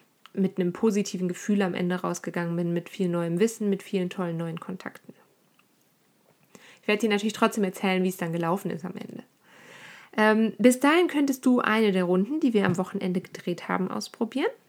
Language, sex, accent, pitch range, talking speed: German, female, German, 185-245 Hz, 185 wpm